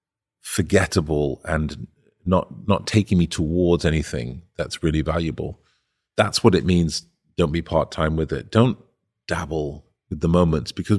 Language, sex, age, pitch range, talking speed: English, male, 40-59, 75-95 Hz, 140 wpm